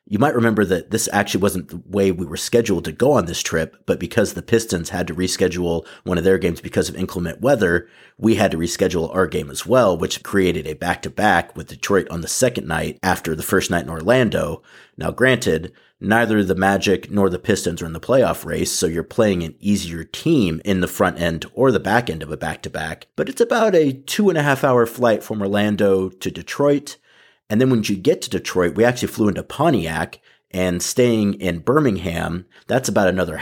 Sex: male